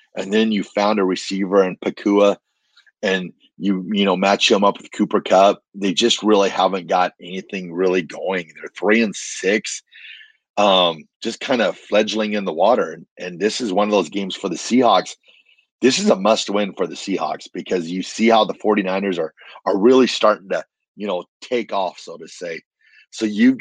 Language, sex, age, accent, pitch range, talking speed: English, male, 30-49, American, 95-110 Hz, 195 wpm